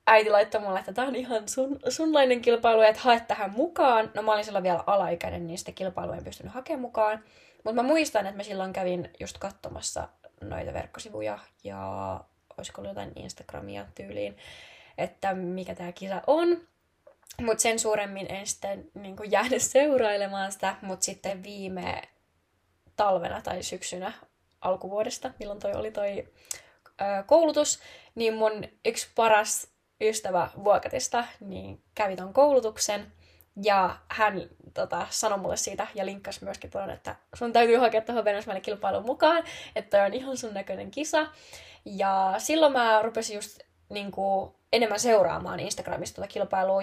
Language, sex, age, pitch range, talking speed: Finnish, female, 20-39, 190-230 Hz, 145 wpm